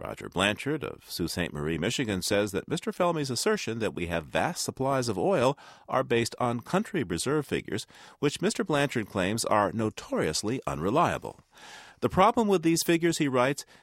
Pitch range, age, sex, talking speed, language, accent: 90-140 Hz, 40-59, male, 170 wpm, English, American